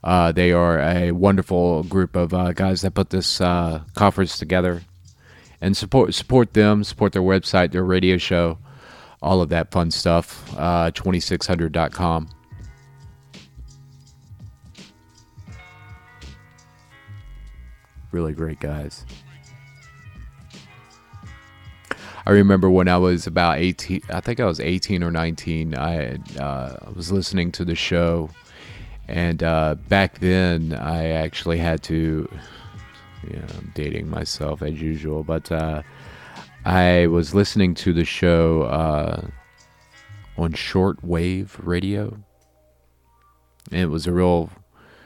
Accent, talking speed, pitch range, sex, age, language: American, 115 wpm, 80-95 Hz, male, 30-49, English